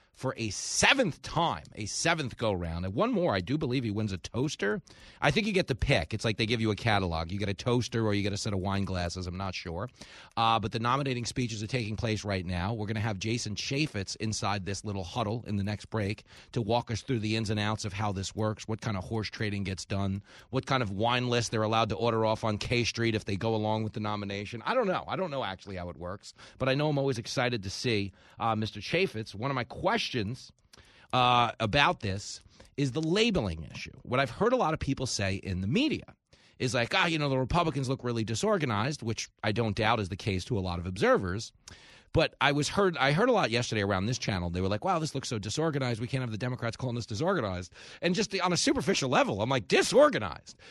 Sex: male